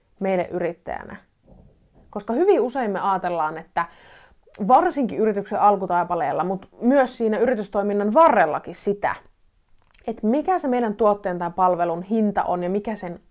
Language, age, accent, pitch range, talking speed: Finnish, 30-49, native, 180-240 Hz, 130 wpm